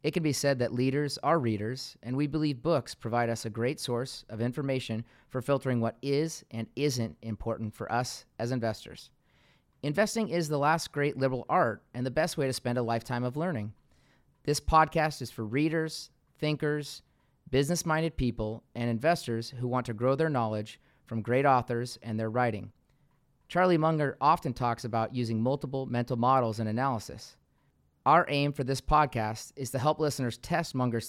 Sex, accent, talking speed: male, American, 175 wpm